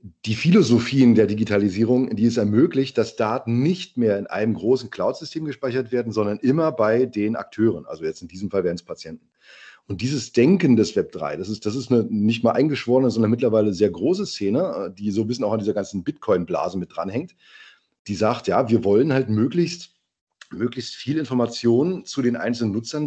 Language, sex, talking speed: German, male, 185 wpm